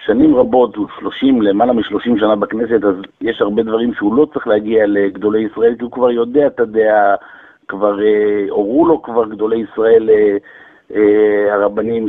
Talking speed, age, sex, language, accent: 155 wpm, 50-69, male, Hebrew, Italian